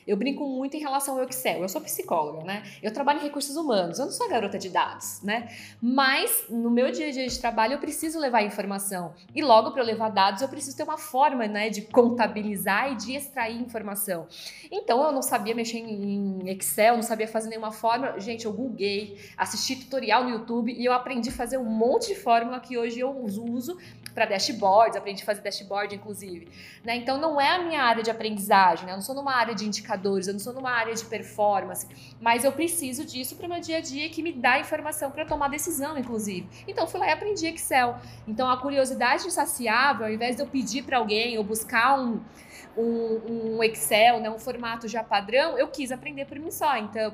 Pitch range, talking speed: 215-275 Hz, 215 wpm